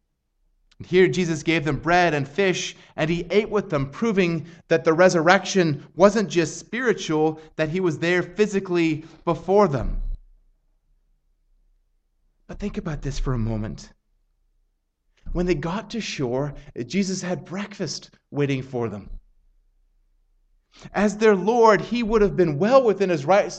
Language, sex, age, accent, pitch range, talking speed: English, male, 30-49, American, 120-195 Hz, 140 wpm